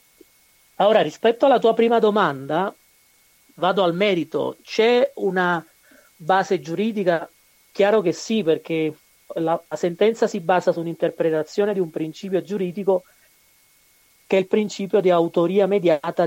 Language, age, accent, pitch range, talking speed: Italian, 30-49, native, 155-200 Hz, 125 wpm